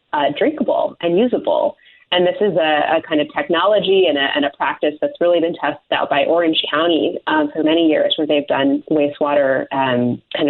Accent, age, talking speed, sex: American, 30-49, 195 wpm, female